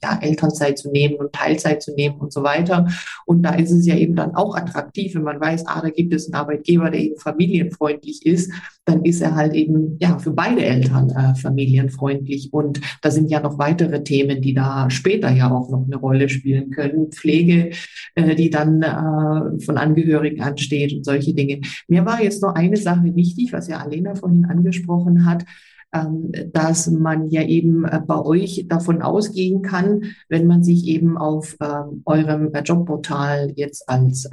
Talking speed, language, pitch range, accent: 180 wpm, German, 145-175 Hz, German